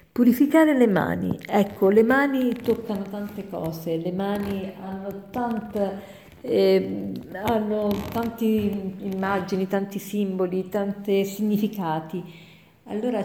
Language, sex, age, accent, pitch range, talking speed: Italian, female, 50-69, native, 185-235 Hz, 90 wpm